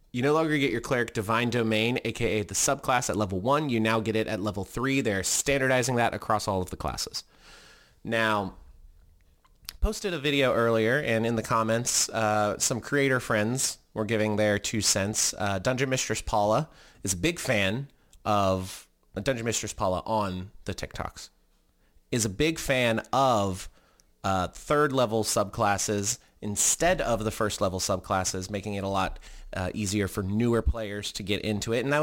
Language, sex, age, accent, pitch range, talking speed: English, male, 30-49, American, 100-120 Hz, 170 wpm